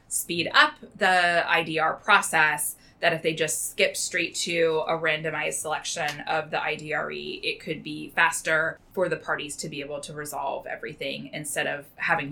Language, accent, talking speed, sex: English, American, 165 wpm, female